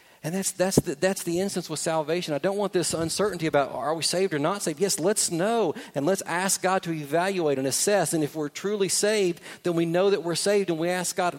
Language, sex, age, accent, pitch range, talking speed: English, male, 40-59, American, 140-180 Hz, 250 wpm